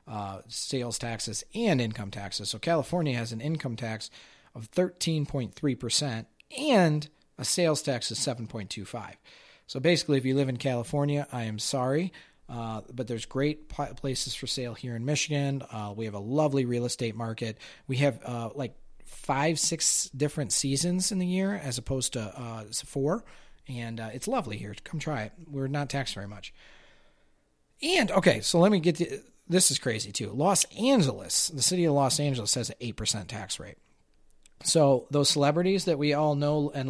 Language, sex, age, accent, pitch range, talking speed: English, male, 40-59, American, 115-150 Hz, 175 wpm